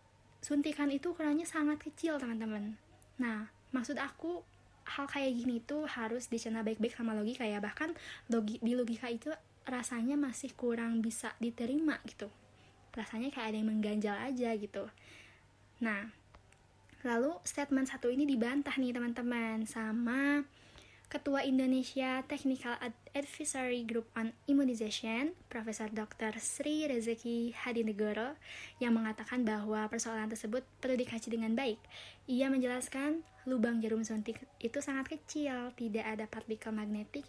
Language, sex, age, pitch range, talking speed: Indonesian, female, 20-39, 220-265 Hz, 125 wpm